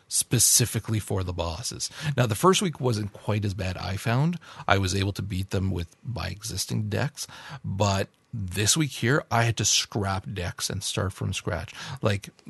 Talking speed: 180 wpm